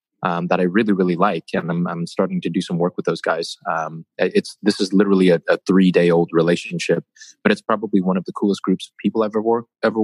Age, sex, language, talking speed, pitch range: 20-39, male, English, 250 wpm, 90-105 Hz